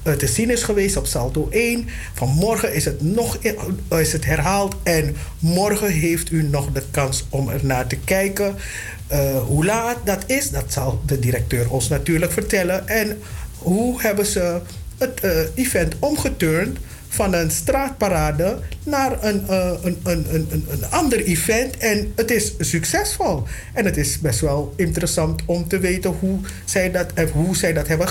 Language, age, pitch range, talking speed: Dutch, 50-69, 145-205 Hz, 150 wpm